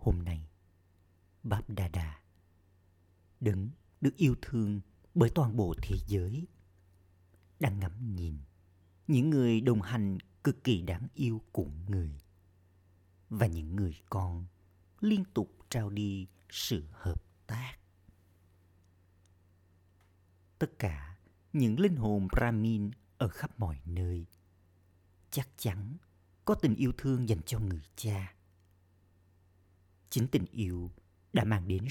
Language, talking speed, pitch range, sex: Vietnamese, 120 wpm, 90-105 Hz, male